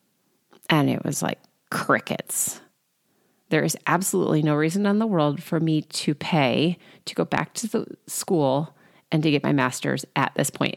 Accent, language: American, English